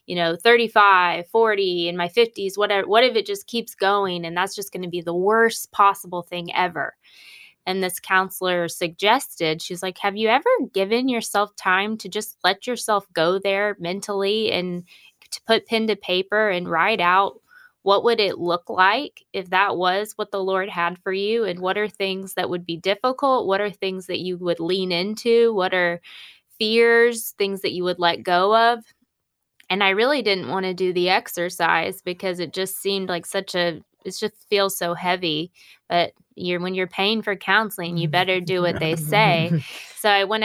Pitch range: 175-210 Hz